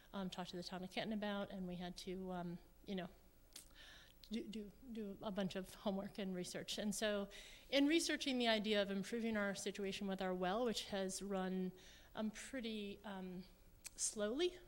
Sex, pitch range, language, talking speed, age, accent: female, 185-220 Hz, English, 180 wpm, 30-49, American